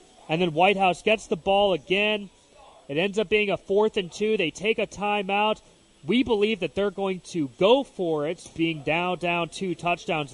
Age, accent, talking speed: 30-49, American, 190 wpm